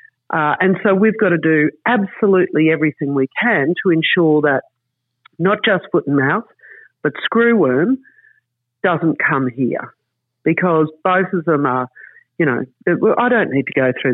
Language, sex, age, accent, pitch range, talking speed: English, female, 50-69, Australian, 140-190 Hz, 160 wpm